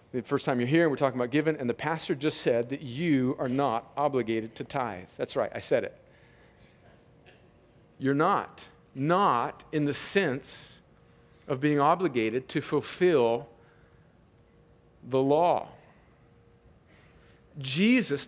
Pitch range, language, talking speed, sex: 140-200 Hz, English, 130 wpm, male